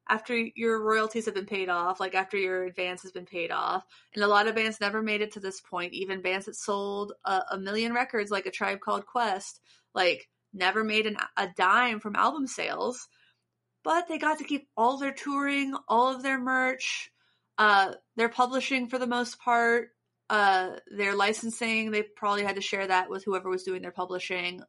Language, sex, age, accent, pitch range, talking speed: English, female, 30-49, American, 200-250 Hz, 195 wpm